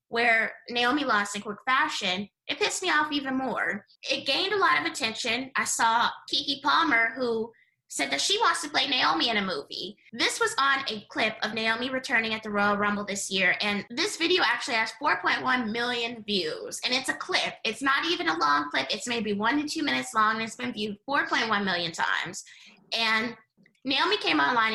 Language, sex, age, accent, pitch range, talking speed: English, female, 20-39, American, 205-275 Hz, 200 wpm